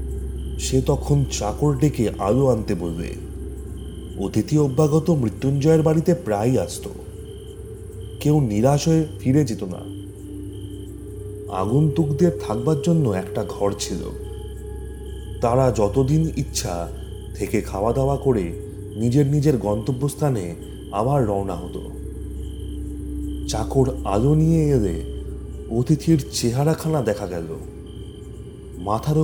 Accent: native